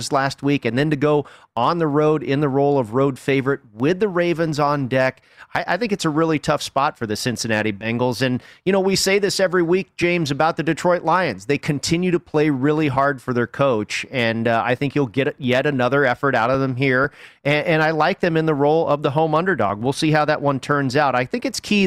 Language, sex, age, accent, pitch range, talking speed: English, male, 30-49, American, 125-155 Hz, 245 wpm